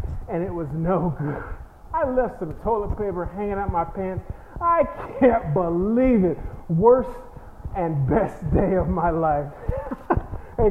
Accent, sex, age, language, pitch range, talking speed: American, male, 30-49, English, 160-200 Hz, 145 wpm